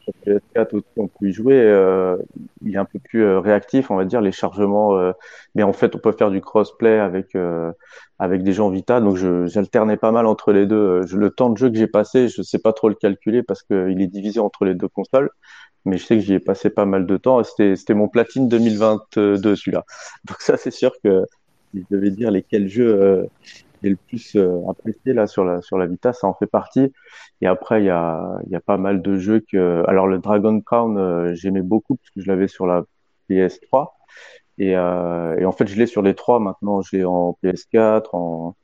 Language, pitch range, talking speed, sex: French, 95-110 Hz, 230 wpm, male